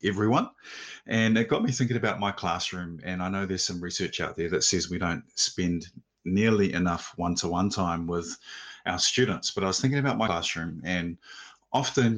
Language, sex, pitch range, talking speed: English, male, 90-105 Hz, 185 wpm